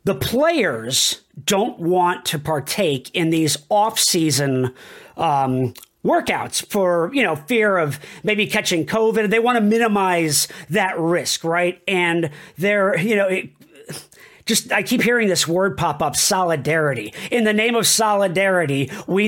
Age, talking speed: 40-59, 145 wpm